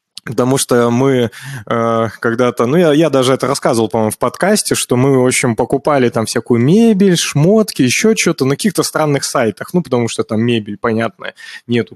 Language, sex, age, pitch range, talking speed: Russian, male, 20-39, 120-155 Hz, 180 wpm